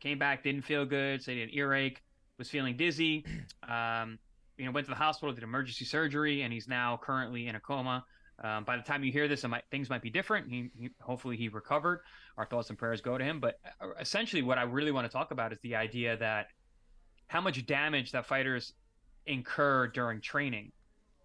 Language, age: English, 20-39